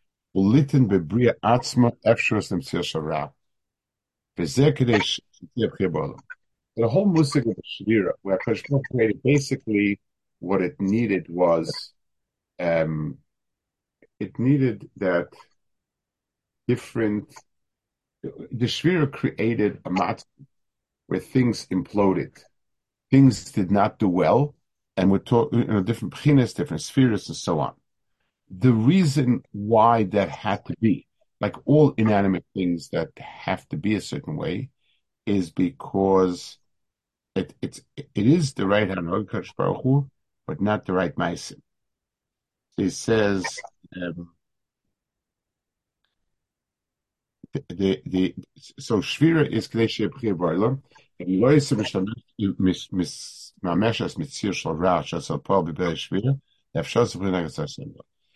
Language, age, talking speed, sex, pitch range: English, 50-69, 100 wpm, male, 95-130 Hz